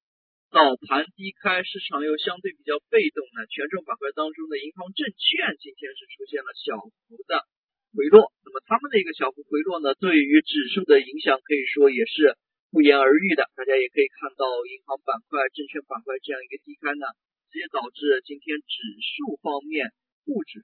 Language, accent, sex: Chinese, native, male